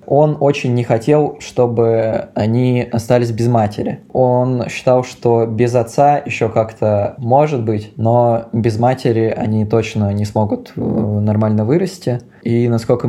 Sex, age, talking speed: male, 20-39, 135 wpm